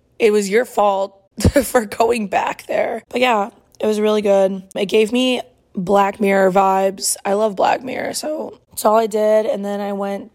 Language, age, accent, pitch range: English, 20-39, American, 195-225 Hz